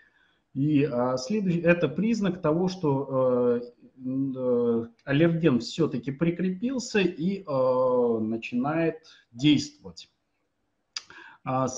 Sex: male